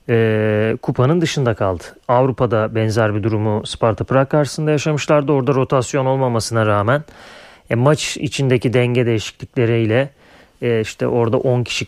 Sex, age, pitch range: male, 30-49, 120-155 Hz